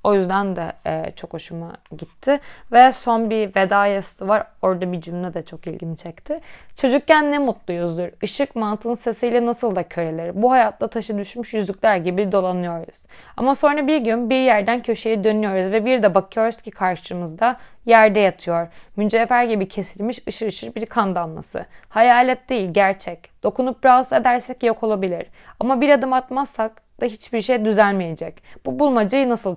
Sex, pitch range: female, 190-245 Hz